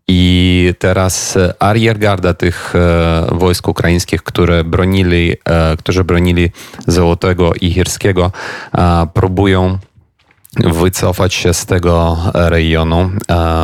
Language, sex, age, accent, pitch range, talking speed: Polish, male, 30-49, native, 85-95 Hz, 85 wpm